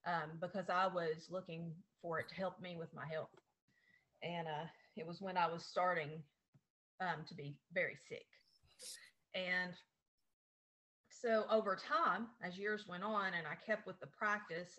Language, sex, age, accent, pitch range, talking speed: English, female, 30-49, American, 165-210 Hz, 160 wpm